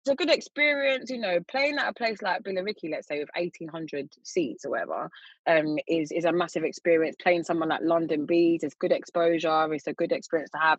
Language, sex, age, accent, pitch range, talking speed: English, female, 20-39, British, 150-180 Hz, 220 wpm